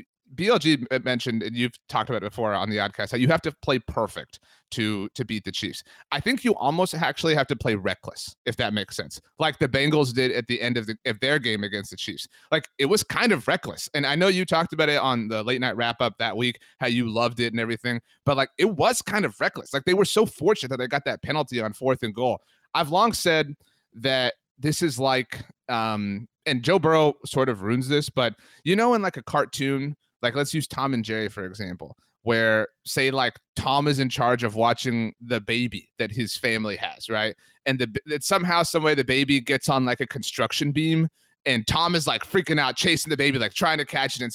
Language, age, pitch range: English, 30-49, 120-155 Hz